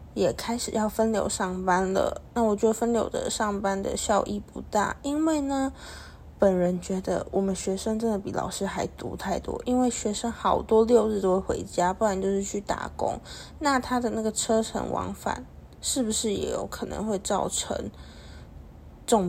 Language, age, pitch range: Chinese, 20-39, 195-235 Hz